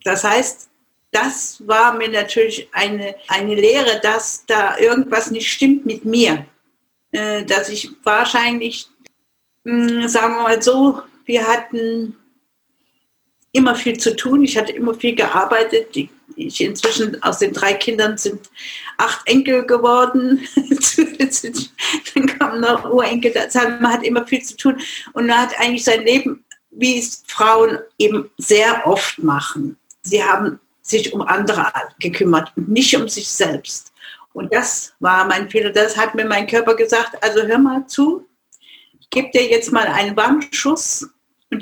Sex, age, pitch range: female, 50-69, 215-265 Hz